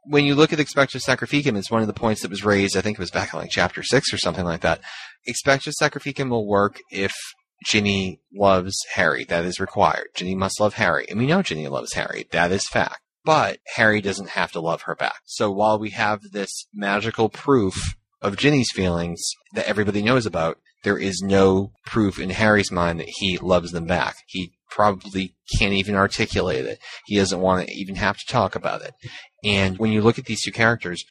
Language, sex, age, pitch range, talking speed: English, male, 30-49, 95-110 Hz, 210 wpm